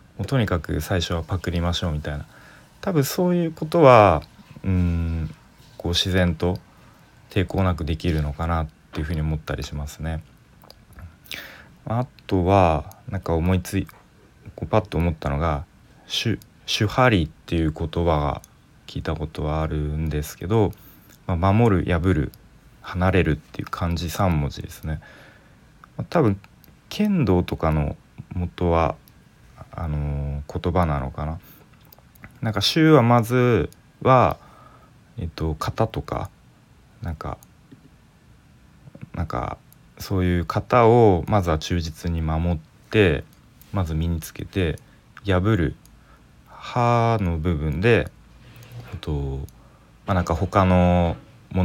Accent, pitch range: native, 80-105 Hz